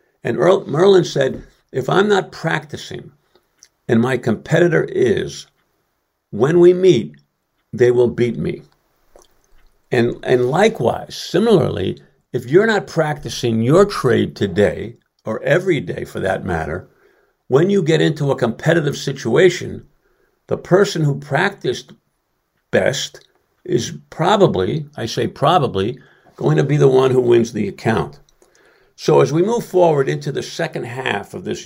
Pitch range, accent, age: 125-180 Hz, American, 60-79